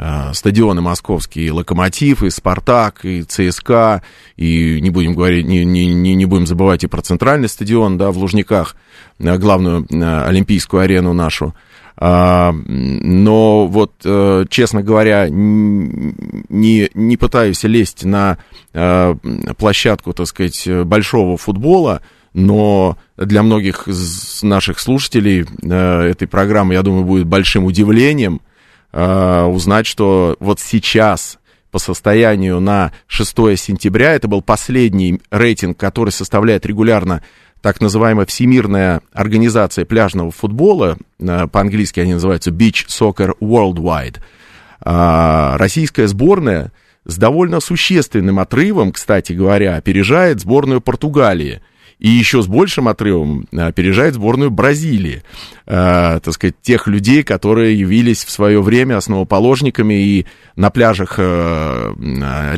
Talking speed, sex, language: 110 wpm, male, Russian